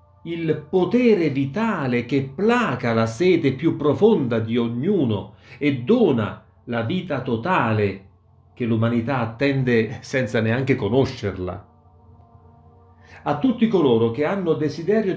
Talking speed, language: 110 wpm, Italian